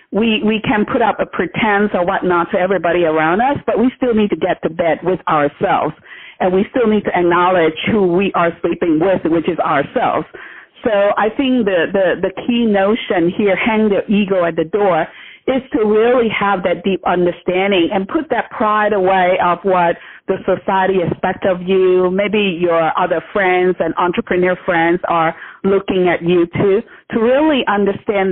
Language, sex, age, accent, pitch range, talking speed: English, female, 50-69, American, 175-210 Hz, 180 wpm